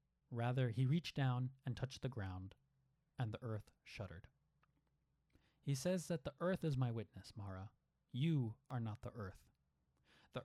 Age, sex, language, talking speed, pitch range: 30-49, male, English, 155 wpm, 100-135 Hz